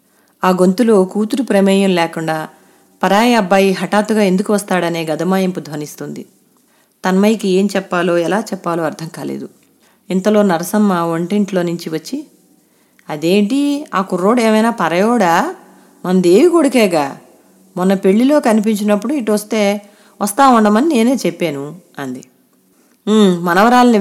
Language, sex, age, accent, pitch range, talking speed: Telugu, female, 30-49, native, 175-215 Hz, 105 wpm